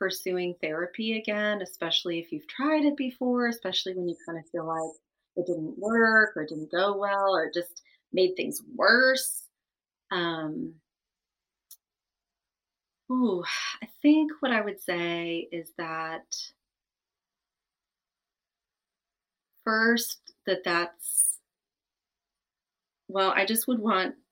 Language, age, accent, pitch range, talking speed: English, 30-49, American, 170-215 Hz, 115 wpm